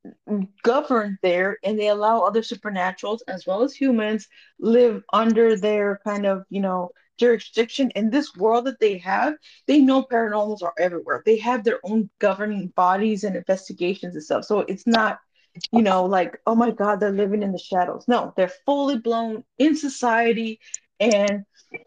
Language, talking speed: English, 165 wpm